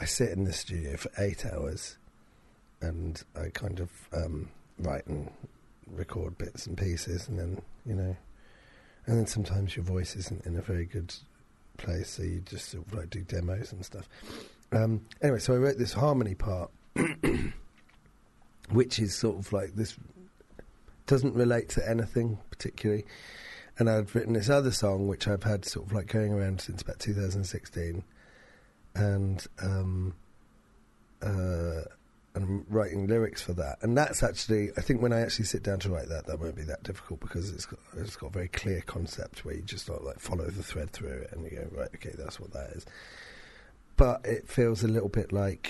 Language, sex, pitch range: English, male, 90-110 Hz